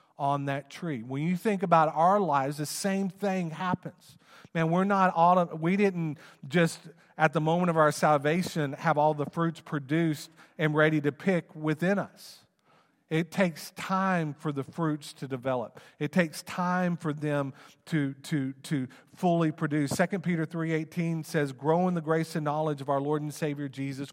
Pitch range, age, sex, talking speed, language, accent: 145-180 Hz, 40-59, male, 175 wpm, English, American